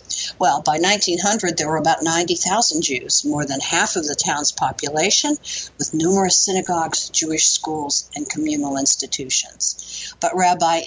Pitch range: 155-215 Hz